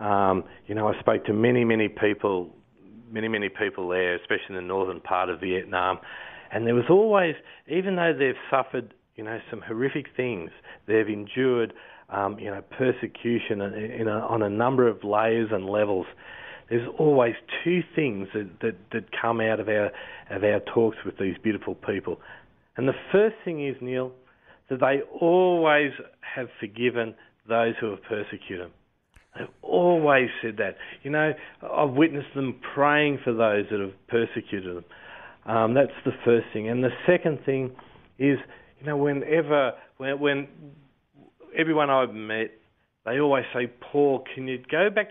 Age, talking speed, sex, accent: 40-59, 160 wpm, male, Australian